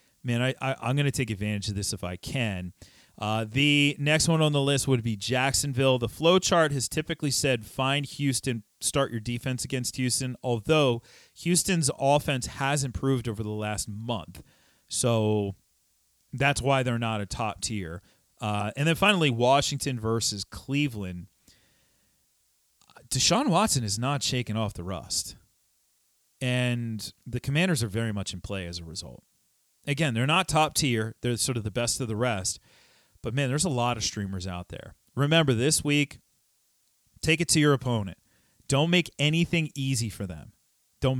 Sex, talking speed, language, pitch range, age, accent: male, 170 wpm, English, 105-140 Hz, 40-59, American